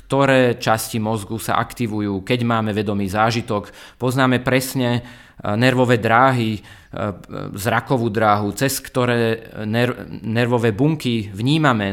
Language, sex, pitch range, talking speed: Slovak, male, 110-130 Hz, 105 wpm